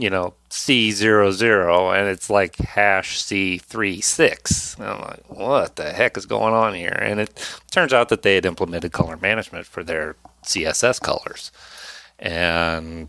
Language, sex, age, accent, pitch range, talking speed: English, male, 40-59, American, 80-100 Hz, 165 wpm